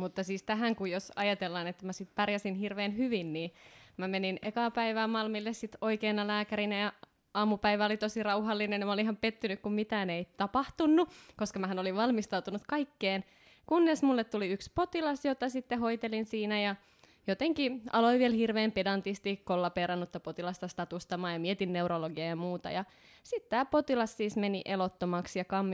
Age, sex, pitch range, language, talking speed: 20-39, female, 195-265 Hz, Finnish, 165 wpm